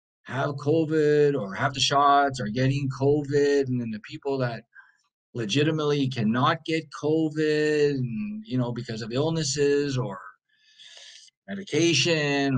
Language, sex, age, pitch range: English, male, 50-69, 125-160 Hz